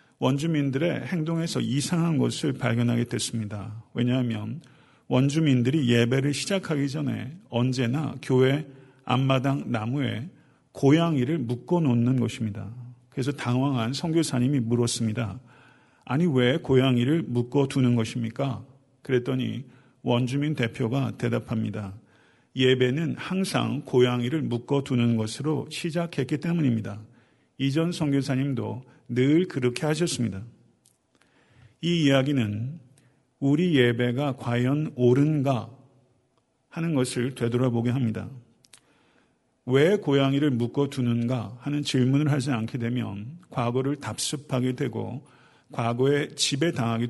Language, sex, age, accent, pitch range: Korean, male, 50-69, native, 120-145 Hz